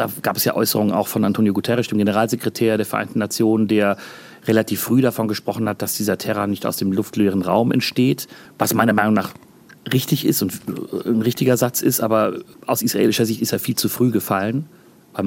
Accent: German